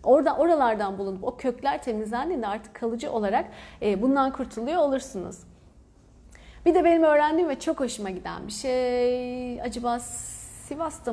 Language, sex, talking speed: Turkish, female, 135 wpm